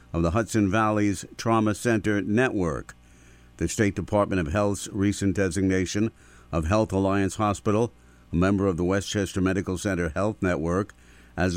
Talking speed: 145 wpm